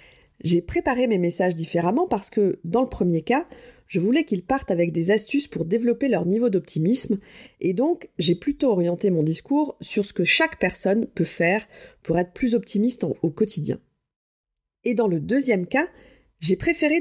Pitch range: 175-250 Hz